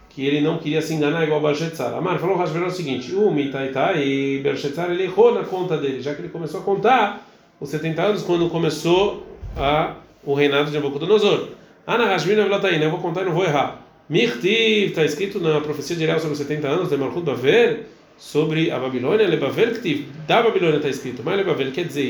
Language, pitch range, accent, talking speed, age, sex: Portuguese, 140-195 Hz, Brazilian, 200 wpm, 40-59, male